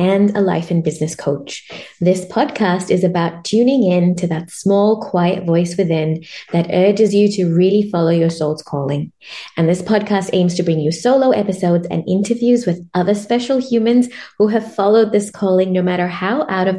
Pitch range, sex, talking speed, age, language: 170-220 Hz, female, 185 wpm, 20-39, English